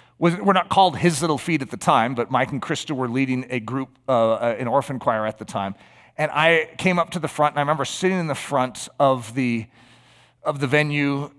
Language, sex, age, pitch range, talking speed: English, male, 40-59, 125-175 Hz, 225 wpm